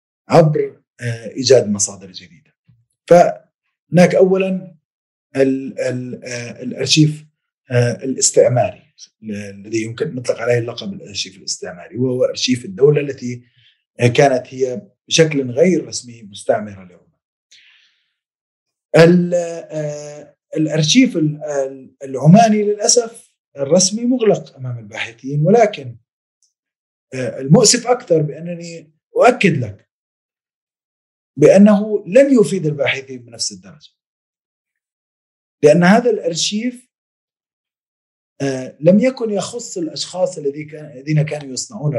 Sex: male